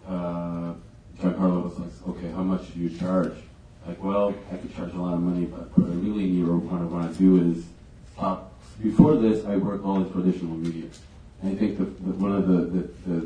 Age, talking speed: 30-49, 220 wpm